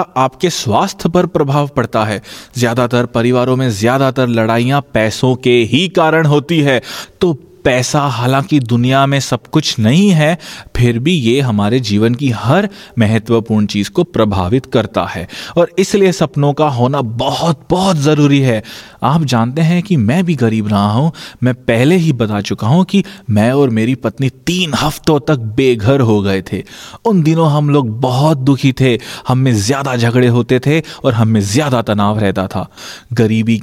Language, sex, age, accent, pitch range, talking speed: Hindi, male, 30-49, native, 110-145 Hz, 170 wpm